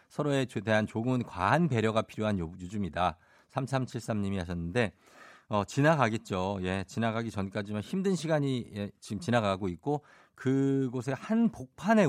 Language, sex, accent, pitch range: Korean, male, native, 105-155 Hz